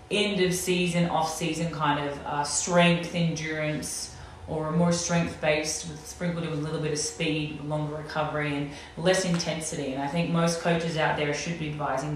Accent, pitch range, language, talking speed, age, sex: Australian, 145-165 Hz, English, 190 wpm, 30-49, female